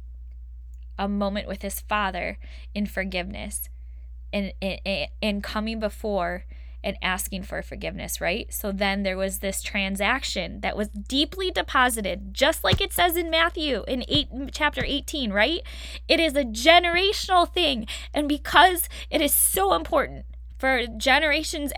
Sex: female